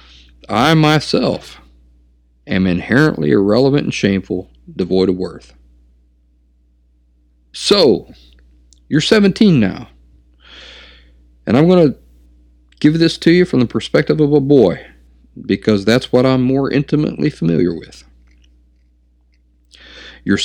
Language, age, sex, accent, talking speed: English, 50-69, male, American, 110 wpm